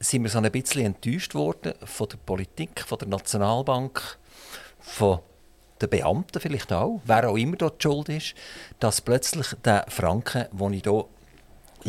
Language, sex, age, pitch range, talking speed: German, male, 50-69, 100-130 Hz, 155 wpm